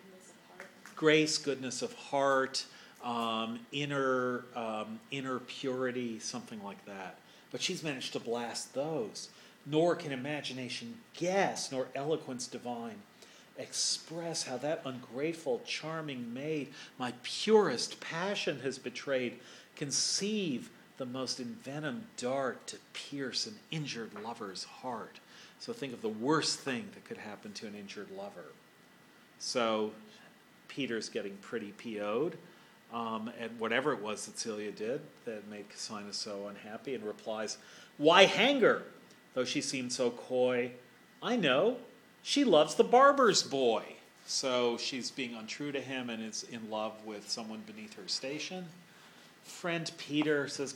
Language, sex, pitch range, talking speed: English, male, 120-160 Hz, 135 wpm